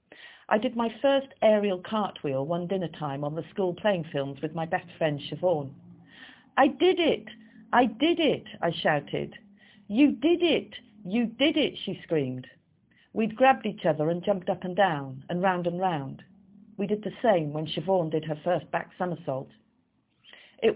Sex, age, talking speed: female, 50-69, 175 wpm